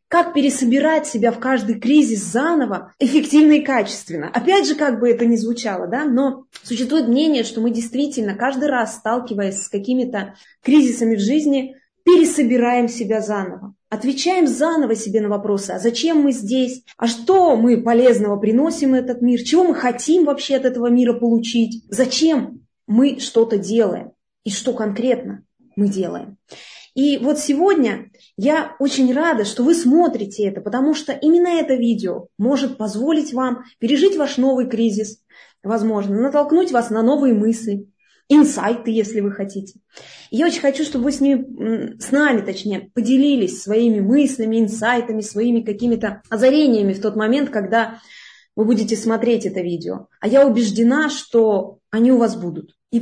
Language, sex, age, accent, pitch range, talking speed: Russian, female, 20-39, native, 220-275 Hz, 155 wpm